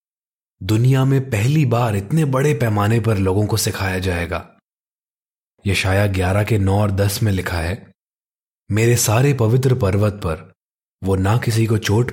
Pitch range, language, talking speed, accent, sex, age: 95-120 Hz, Hindi, 155 wpm, native, male, 20-39